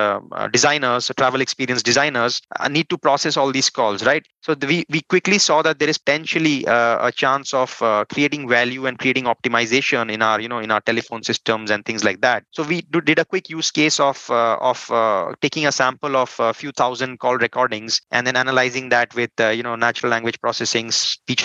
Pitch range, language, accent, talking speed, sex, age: 115-140 Hz, English, Indian, 220 wpm, male, 20-39